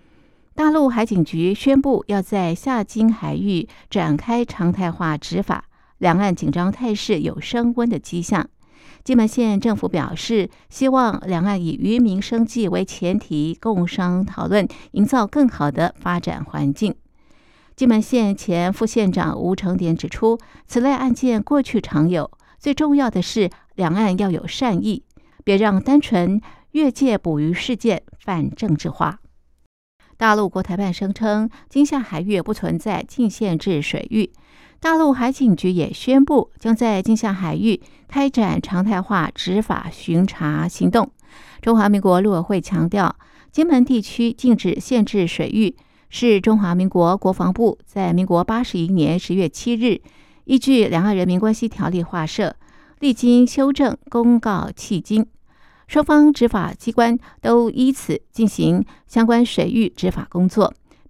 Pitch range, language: 180-235 Hz, Chinese